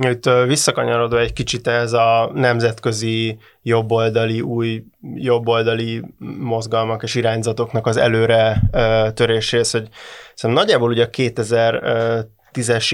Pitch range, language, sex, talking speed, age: 115-125 Hz, Hungarian, male, 95 wpm, 20-39